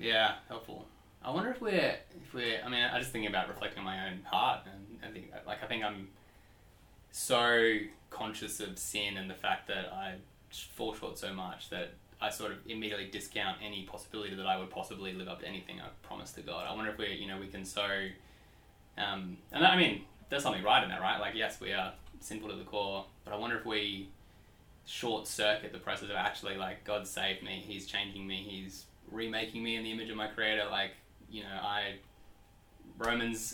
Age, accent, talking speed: 20-39, Australian, 210 wpm